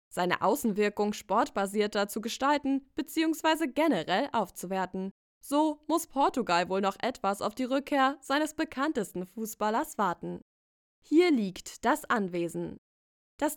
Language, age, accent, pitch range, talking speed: German, 20-39, German, 195-285 Hz, 115 wpm